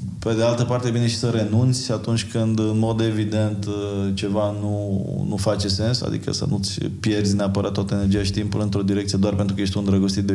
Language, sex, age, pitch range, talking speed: Romanian, male, 20-39, 100-120 Hz, 215 wpm